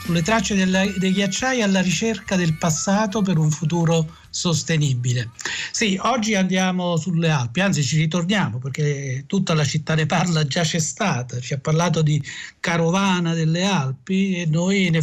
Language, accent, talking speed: Italian, native, 155 wpm